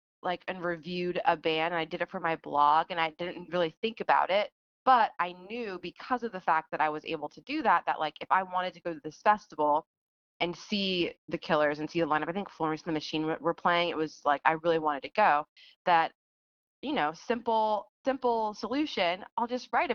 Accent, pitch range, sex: American, 155-180 Hz, female